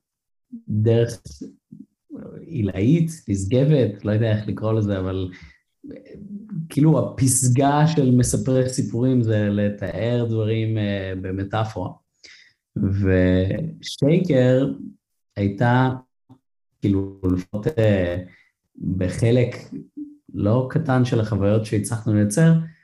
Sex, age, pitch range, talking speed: male, 30-49, 100-130 Hz, 80 wpm